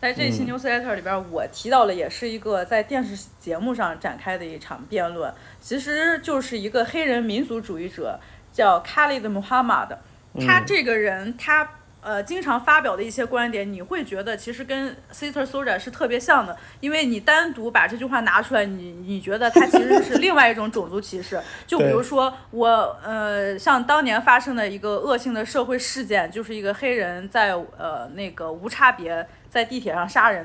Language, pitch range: Chinese, 200-275 Hz